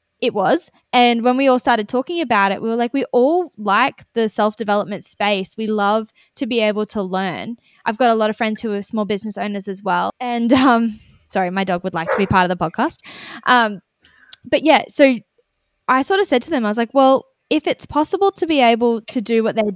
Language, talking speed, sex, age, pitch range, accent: English, 230 wpm, female, 10-29, 205-250 Hz, Australian